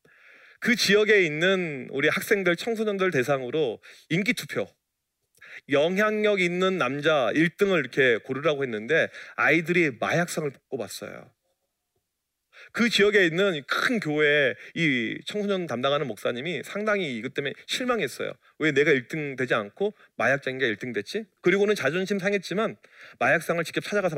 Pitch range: 150-205 Hz